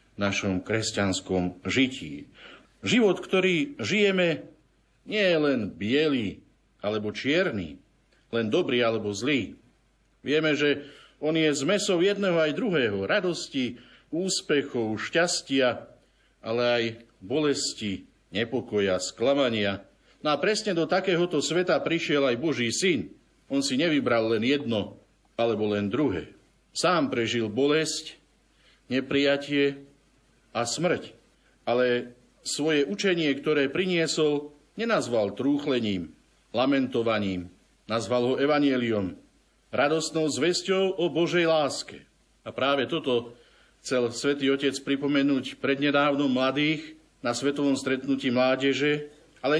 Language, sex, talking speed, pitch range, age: Slovak, male, 105 wpm, 120-170 Hz, 50-69